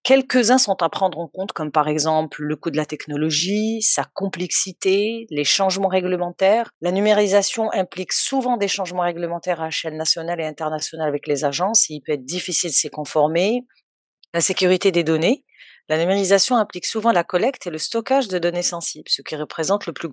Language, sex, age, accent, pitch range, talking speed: French, female, 30-49, French, 160-195 Hz, 190 wpm